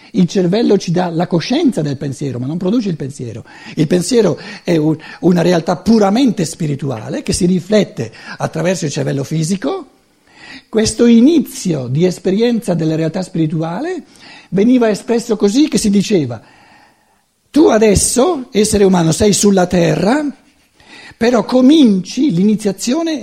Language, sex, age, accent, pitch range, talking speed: Italian, male, 60-79, native, 140-215 Hz, 130 wpm